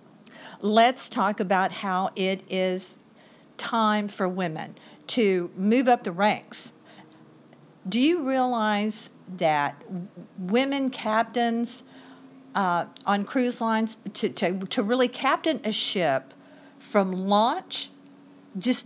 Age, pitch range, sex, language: 50-69, 190-240 Hz, female, English